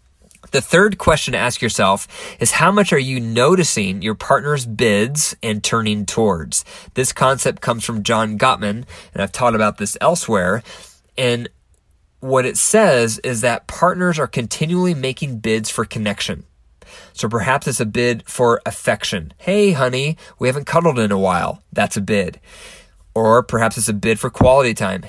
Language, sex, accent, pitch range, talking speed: English, male, American, 105-140 Hz, 165 wpm